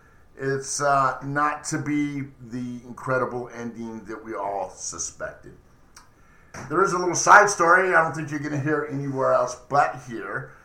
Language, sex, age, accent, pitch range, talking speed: English, male, 50-69, American, 135-180 Hz, 165 wpm